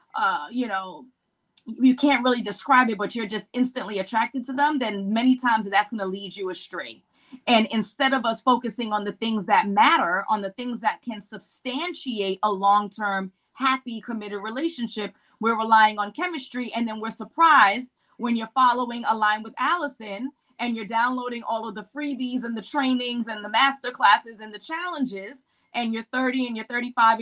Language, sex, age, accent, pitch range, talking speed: English, female, 20-39, American, 215-270 Hz, 180 wpm